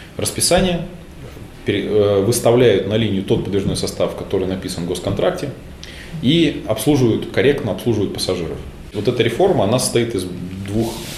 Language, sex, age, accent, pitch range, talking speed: Russian, male, 20-39, native, 100-125 Hz, 125 wpm